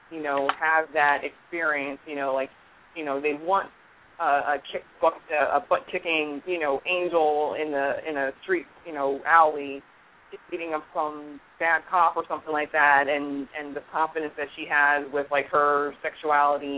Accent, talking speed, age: American, 180 wpm, 20-39